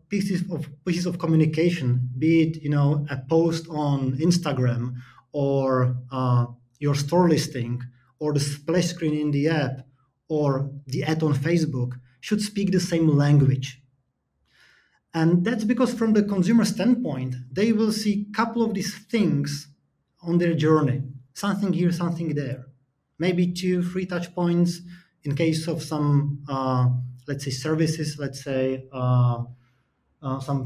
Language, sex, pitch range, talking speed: English, male, 135-170 Hz, 145 wpm